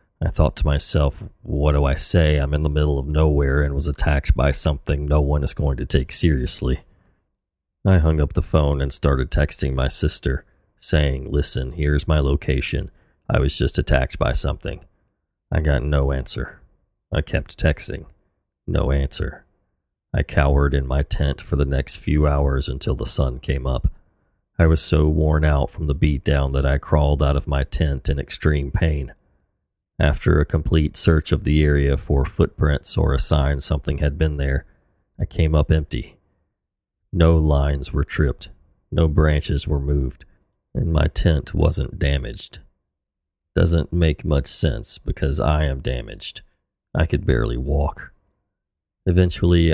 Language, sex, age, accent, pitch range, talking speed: English, male, 30-49, American, 70-80 Hz, 165 wpm